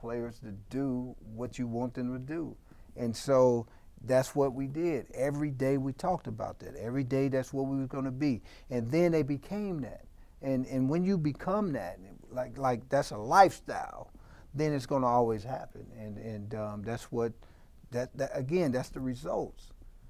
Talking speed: 190 wpm